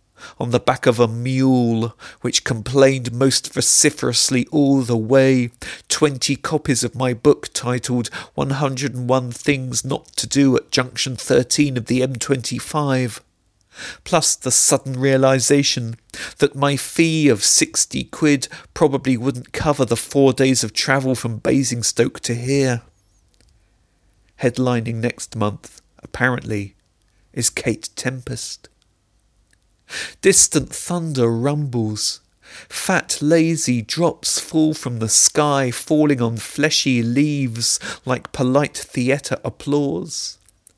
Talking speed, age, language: 115 wpm, 40-59, English